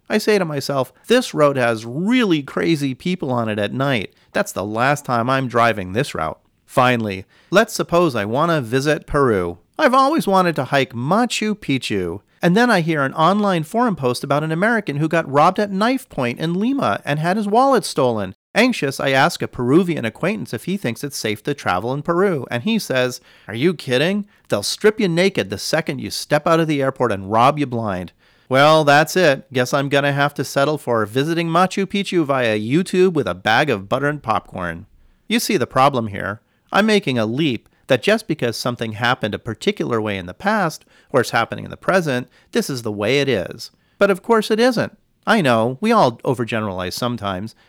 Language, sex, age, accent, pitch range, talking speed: English, male, 40-59, American, 115-190 Hz, 205 wpm